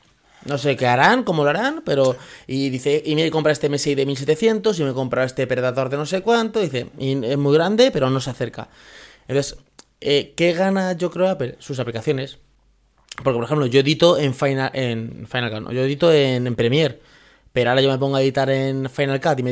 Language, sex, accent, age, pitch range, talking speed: Spanish, male, Spanish, 20-39, 130-180 Hz, 230 wpm